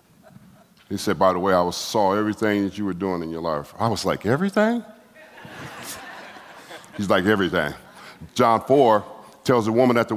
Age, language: 50-69, English